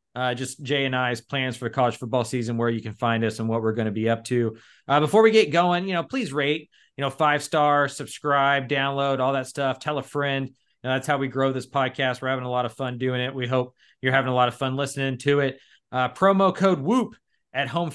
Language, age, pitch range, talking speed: English, 30-49, 130-155 Hz, 260 wpm